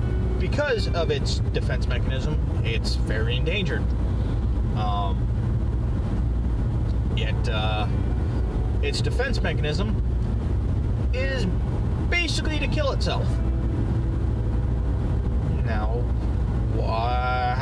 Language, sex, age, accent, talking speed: English, male, 30-49, American, 70 wpm